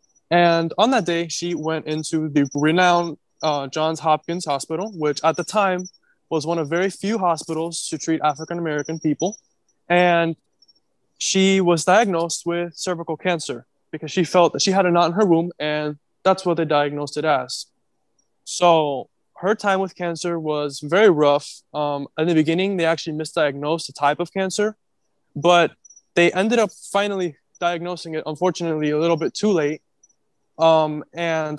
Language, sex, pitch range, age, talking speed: English, male, 155-180 Hz, 20-39, 165 wpm